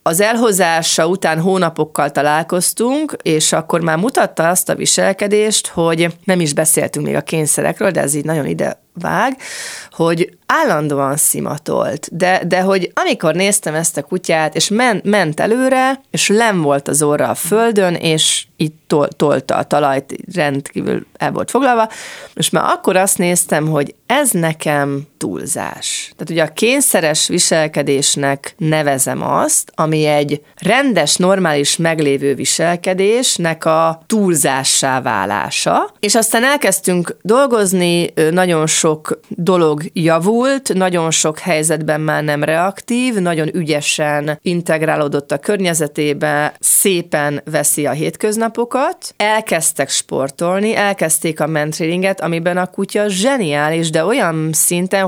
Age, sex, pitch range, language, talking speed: 30-49, female, 155-200 Hz, Hungarian, 125 wpm